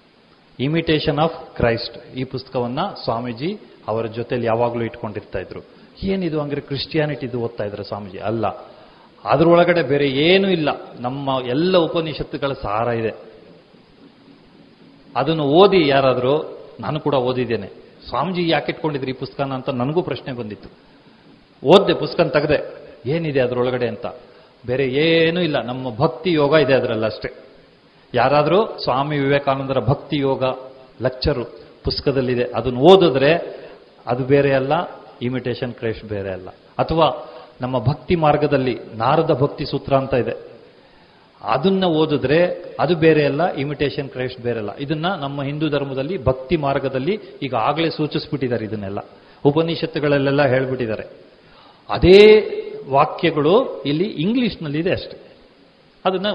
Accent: native